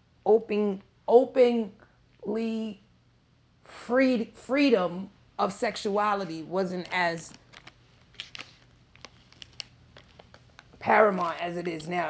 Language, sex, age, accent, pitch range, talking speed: English, female, 30-49, American, 155-205 Hz, 65 wpm